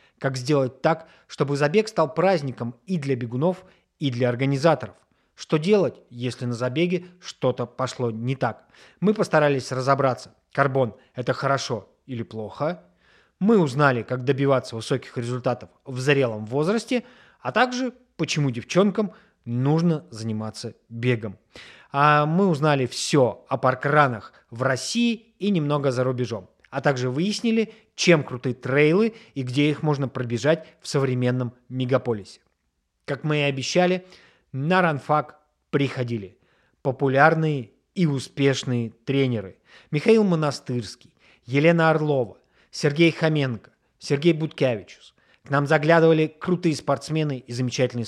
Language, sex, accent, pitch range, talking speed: Russian, male, native, 125-160 Hz, 120 wpm